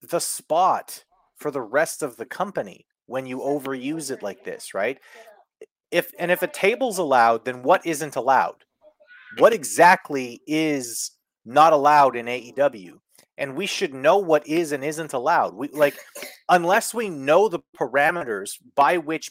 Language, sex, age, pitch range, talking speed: English, male, 30-49, 135-195 Hz, 155 wpm